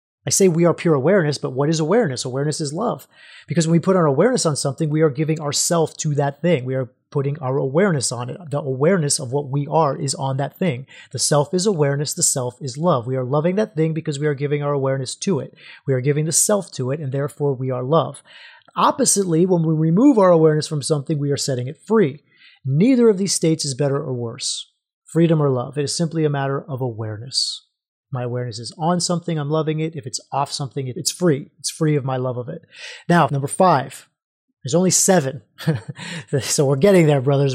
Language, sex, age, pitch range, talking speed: English, male, 30-49, 140-170 Hz, 225 wpm